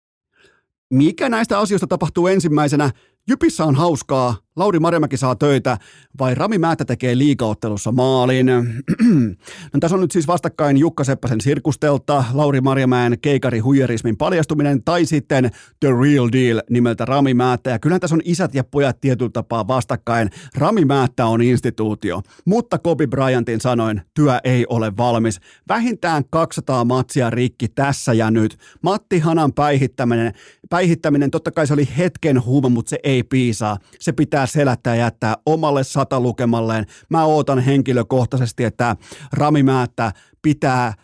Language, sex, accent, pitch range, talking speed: Finnish, male, native, 120-150 Hz, 135 wpm